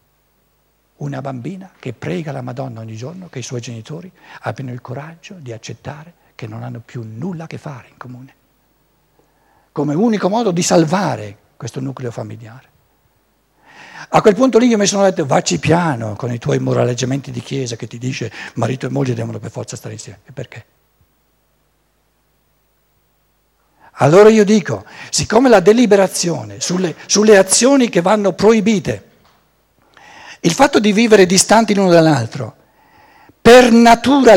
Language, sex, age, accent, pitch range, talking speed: Italian, male, 60-79, native, 120-185 Hz, 150 wpm